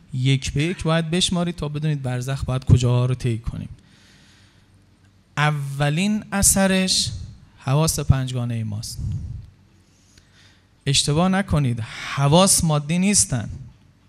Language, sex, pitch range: Persian, male, 110-175 Hz